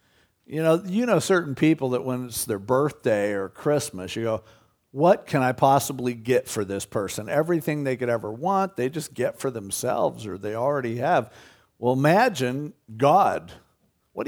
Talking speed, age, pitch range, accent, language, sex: 170 wpm, 50-69, 125-170 Hz, American, English, male